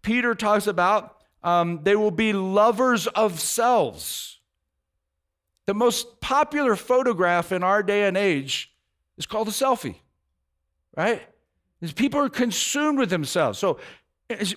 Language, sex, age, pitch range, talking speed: English, male, 50-69, 190-260 Hz, 130 wpm